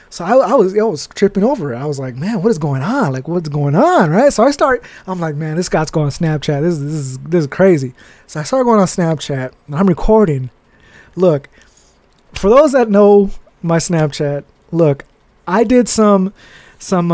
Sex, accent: male, American